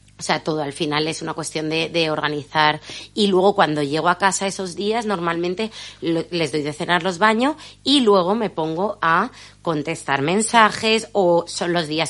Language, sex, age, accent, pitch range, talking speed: Spanish, female, 30-49, Spanish, 150-190 Hz, 190 wpm